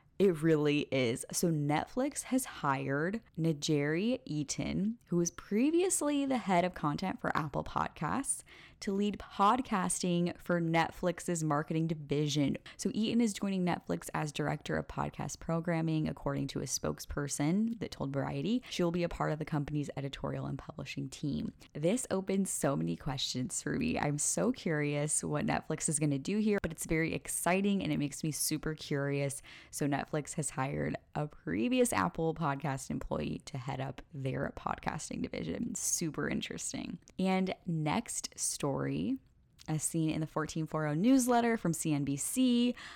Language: English